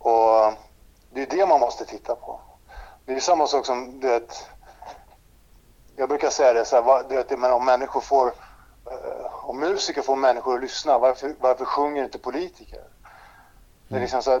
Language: English